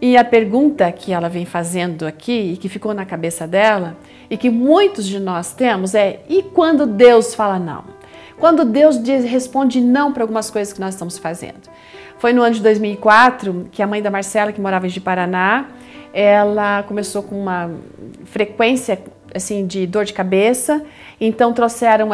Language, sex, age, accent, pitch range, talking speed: Portuguese, female, 40-59, Brazilian, 195-245 Hz, 170 wpm